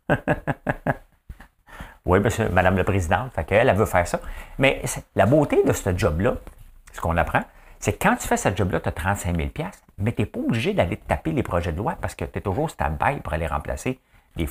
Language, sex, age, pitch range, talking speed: English, male, 60-79, 85-120 Hz, 220 wpm